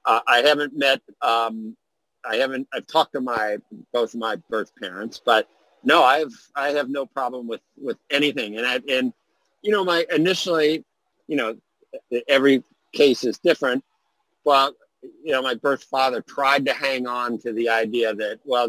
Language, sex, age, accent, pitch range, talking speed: English, male, 50-69, American, 115-145 Hz, 175 wpm